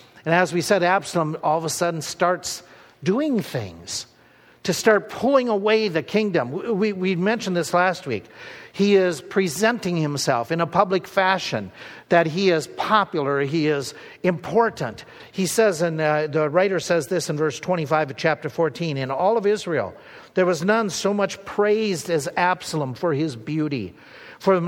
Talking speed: 170 wpm